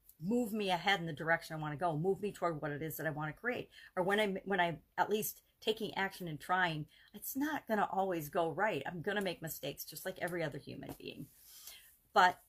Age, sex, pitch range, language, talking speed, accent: 40-59, female, 165-215 Hz, English, 240 wpm, American